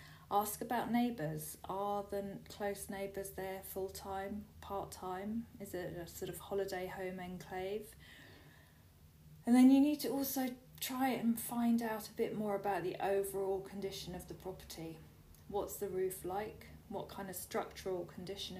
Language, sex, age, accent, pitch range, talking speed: English, female, 40-59, British, 160-200 Hz, 150 wpm